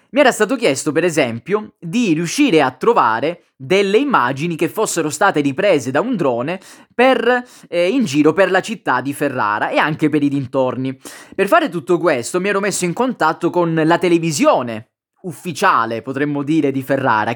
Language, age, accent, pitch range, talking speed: Italian, 20-39, native, 135-190 Hz, 170 wpm